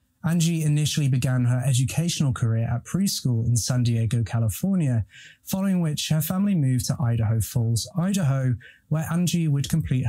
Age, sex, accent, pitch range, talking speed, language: 20-39, male, British, 120-150 Hz, 150 wpm, English